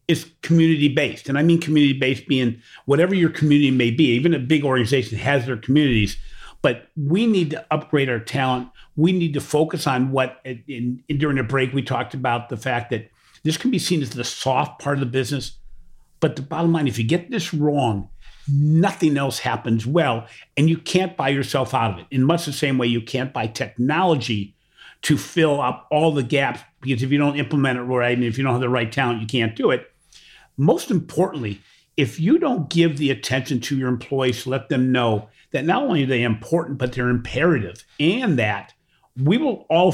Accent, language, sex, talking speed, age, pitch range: American, English, male, 205 wpm, 50-69, 125-160 Hz